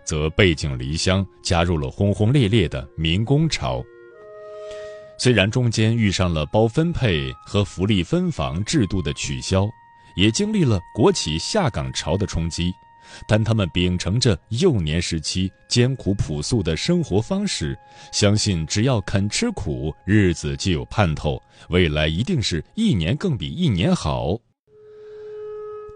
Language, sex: Chinese, male